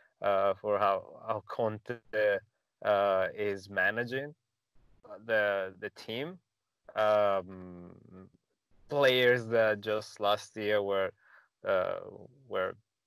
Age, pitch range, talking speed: 20-39, 100-115 Hz, 90 wpm